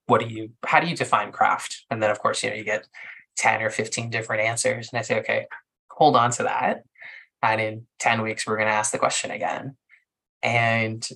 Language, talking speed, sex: English, 220 wpm, male